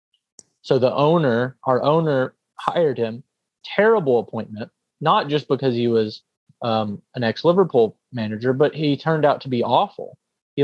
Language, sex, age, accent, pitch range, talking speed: English, male, 30-49, American, 120-170 Hz, 145 wpm